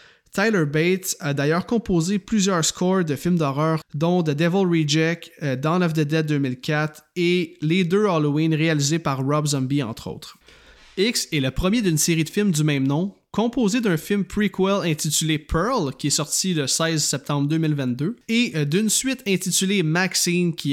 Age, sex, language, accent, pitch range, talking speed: 20-39, male, French, Canadian, 150-185 Hz, 170 wpm